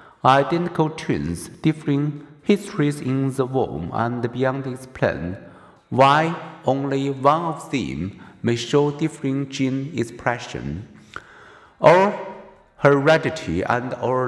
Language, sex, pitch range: Chinese, male, 120-150 Hz